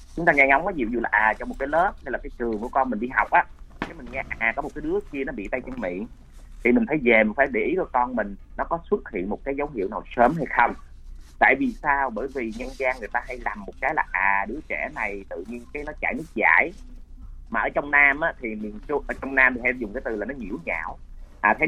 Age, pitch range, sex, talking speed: 30-49, 105-145 Hz, male, 295 wpm